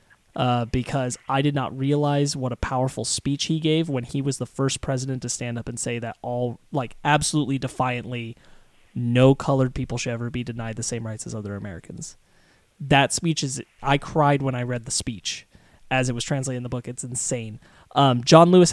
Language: English